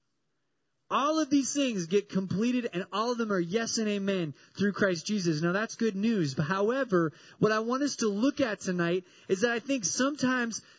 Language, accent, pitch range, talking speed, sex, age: English, American, 175-230 Hz, 200 wpm, male, 20-39